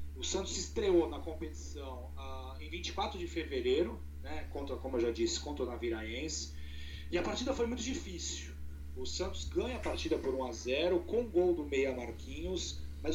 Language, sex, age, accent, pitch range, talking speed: Portuguese, male, 30-49, Brazilian, 75-85 Hz, 175 wpm